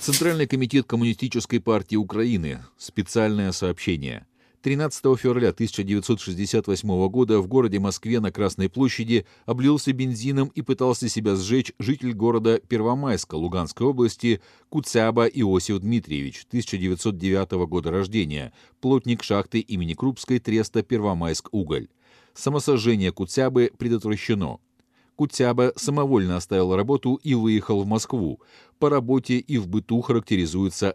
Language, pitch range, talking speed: Russian, 95-130 Hz, 110 wpm